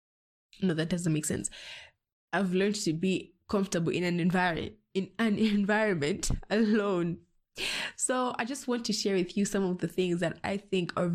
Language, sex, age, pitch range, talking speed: English, female, 20-39, 165-195 Hz, 180 wpm